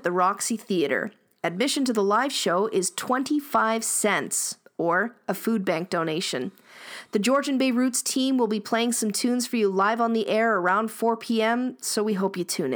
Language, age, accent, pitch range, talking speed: English, 40-59, American, 190-235 Hz, 190 wpm